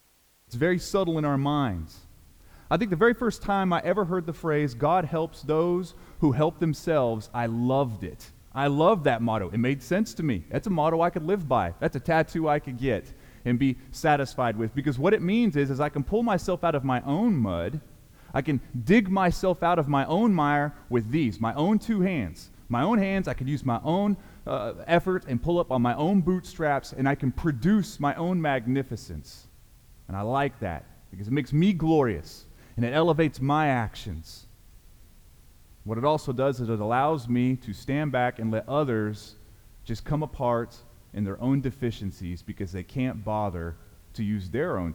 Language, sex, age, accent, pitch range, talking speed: English, male, 30-49, American, 105-160 Hz, 200 wpm